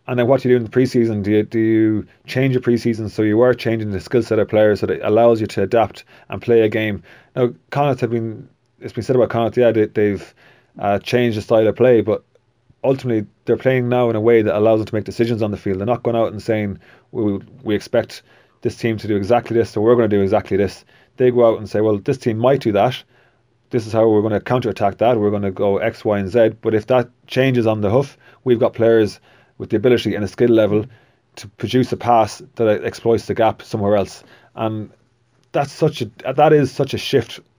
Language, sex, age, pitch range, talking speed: English, male, 30-49, 105-120 Hz, 250 wpm